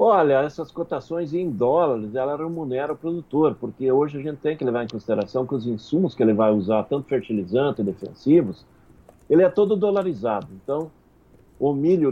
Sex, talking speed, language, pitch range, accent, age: male, 180 wpm, Portuguese, 110-150 Hz, Brazilian, 50-69